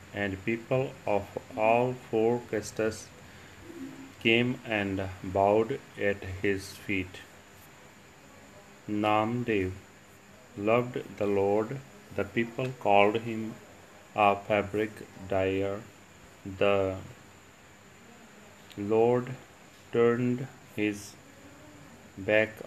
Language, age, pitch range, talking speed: Punjabi, 30-49, 100-110 Hz, 75 wpm